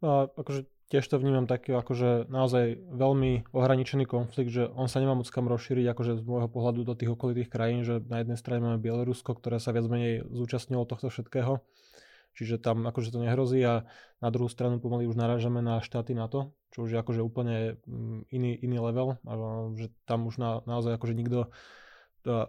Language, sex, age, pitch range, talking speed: Slovak, male, 20-39, 115-125 Hz, 195 wpm